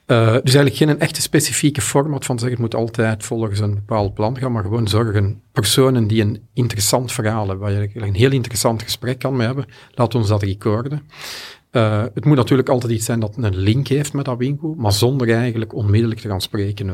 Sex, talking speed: male, 215 wpm